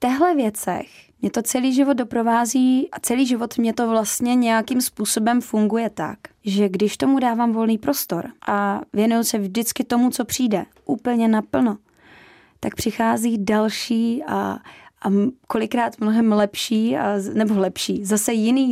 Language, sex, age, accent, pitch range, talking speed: Czech, female, 20-39, native, 215-265 Hz, 145 wpm